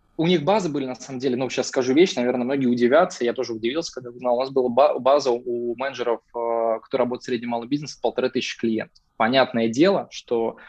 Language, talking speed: Russian, 215 wpm